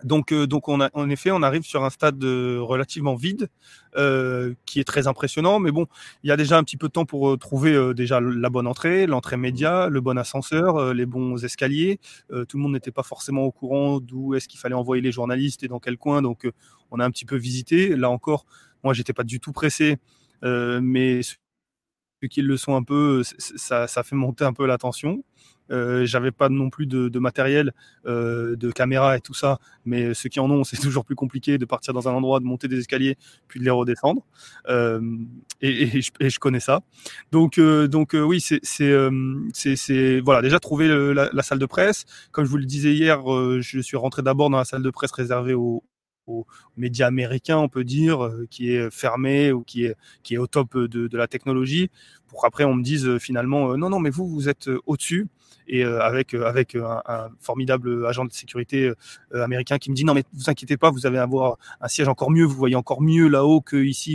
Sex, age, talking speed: male, 30-49, 235 wpm